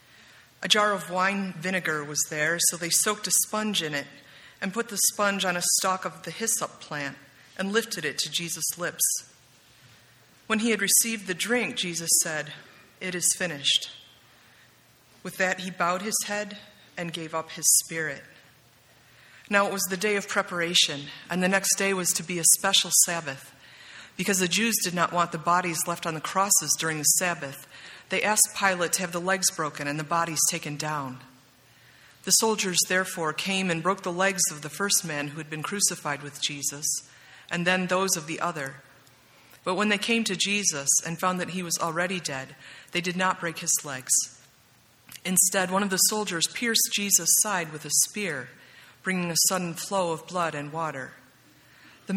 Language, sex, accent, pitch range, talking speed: English, female, American, 155-195 Hz, 185 wpm